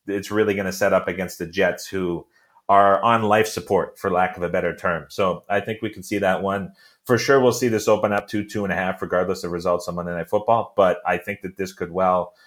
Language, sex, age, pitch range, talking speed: English, male, 30-49, 85-100 Hz, 260 wpm